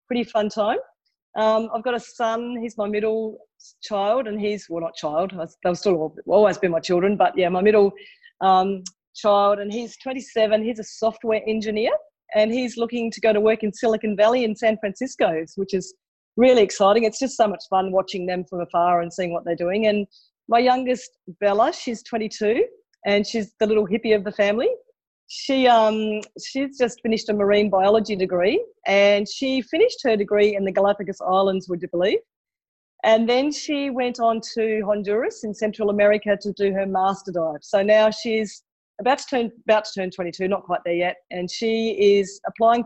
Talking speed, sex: 190 wpm, female